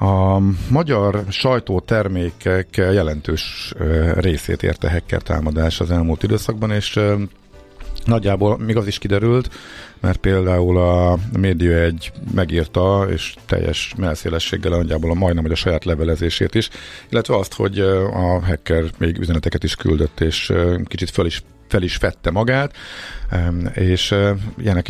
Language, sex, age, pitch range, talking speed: Hungarian, male, 50-69, 80-100 Hz, 130 wpm